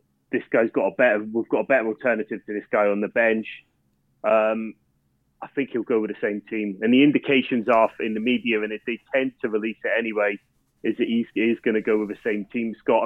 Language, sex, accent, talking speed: English, male, British, 240 wpm